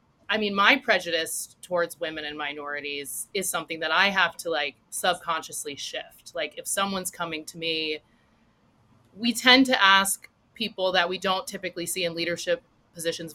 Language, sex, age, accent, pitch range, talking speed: English, female, 30-49, American, 160-200 Hz, 160 wpm